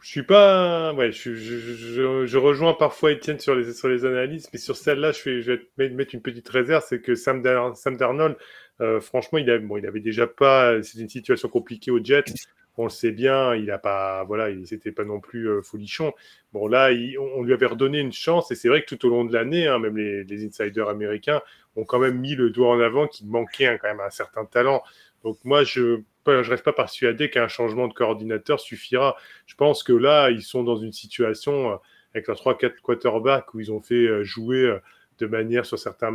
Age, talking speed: 20-39, 230 wpm